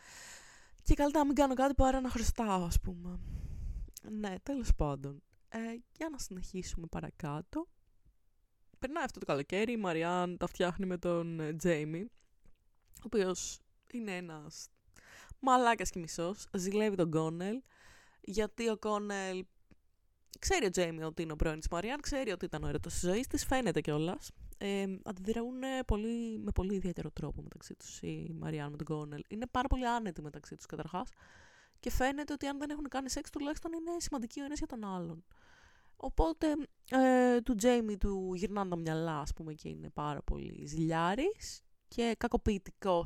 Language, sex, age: Greek, female, 20-39